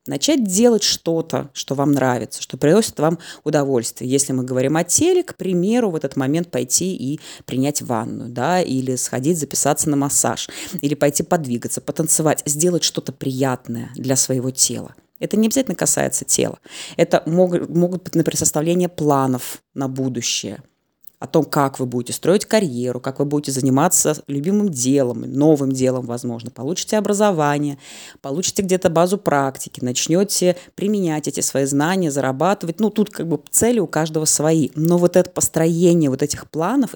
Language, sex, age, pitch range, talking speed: Russian, female, 20-39, 135-180 Hz, 155 wpm